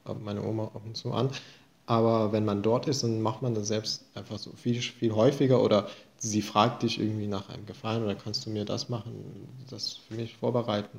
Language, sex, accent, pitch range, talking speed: German, male, German, 110-135 Hz, 215 wpm